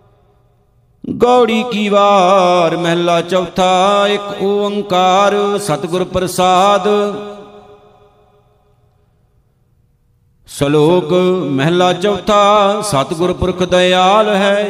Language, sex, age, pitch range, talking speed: Punjabi, male, 50-69, 165-205 Hz, 65 wpm